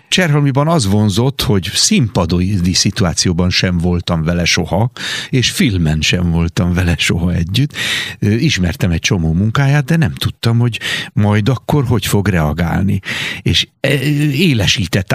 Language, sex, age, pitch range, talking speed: Hungarian, male, 60-79, 90-125 Hz, 125 wpm